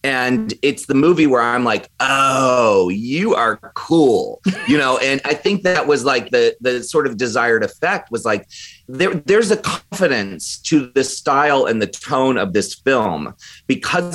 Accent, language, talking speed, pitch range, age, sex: American, English, 170 wpm, 115-155 Hz, 30-49, male